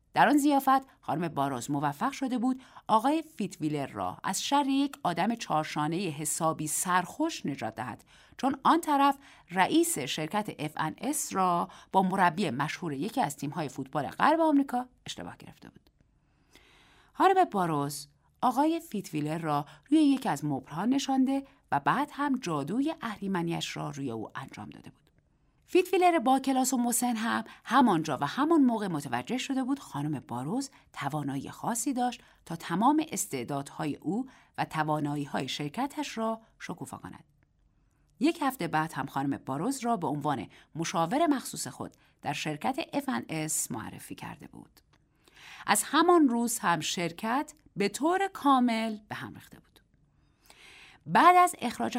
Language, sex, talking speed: Persian, female, 140 wpm